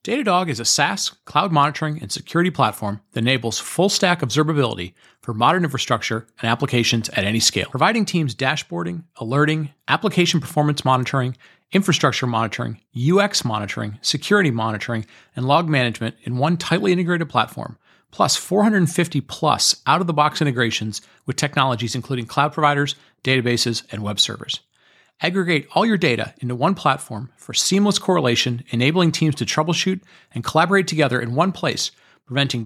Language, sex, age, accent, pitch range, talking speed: English, male, 40-59, American, 115-165 Hz, 140 wpm